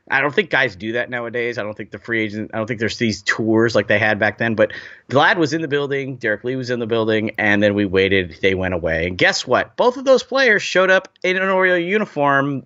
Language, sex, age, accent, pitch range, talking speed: English, male, 30-49, American, 105-135 Hz, 265 wpm